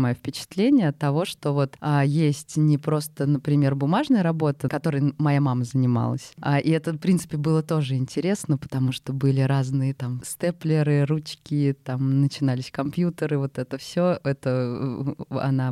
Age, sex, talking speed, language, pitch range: 20-39, female, 155 wpm, Russian, 140-165 Hz